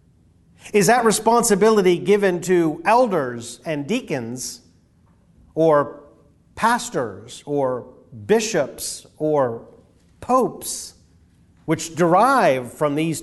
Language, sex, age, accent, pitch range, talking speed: English, male, 40-59, American, 145-210 Hz, 80 wpm